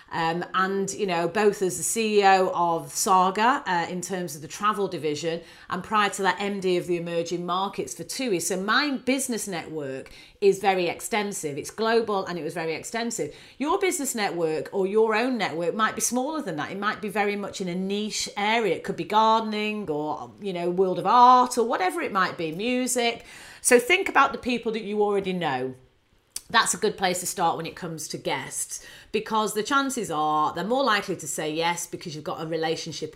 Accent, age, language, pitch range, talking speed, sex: British, 40-59, English, 175-230 Hz, 205 wpm, female